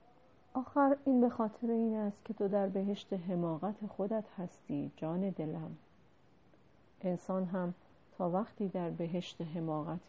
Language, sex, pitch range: Persian, female, 170-225 Hz